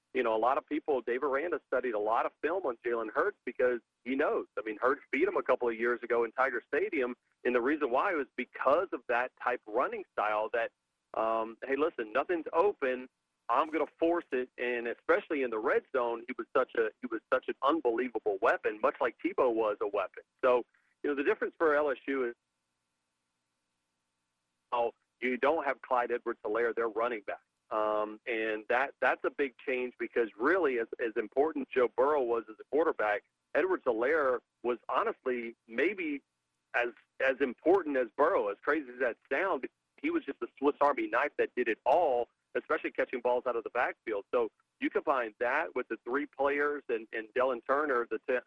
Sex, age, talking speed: male, 40-59, 200 wpm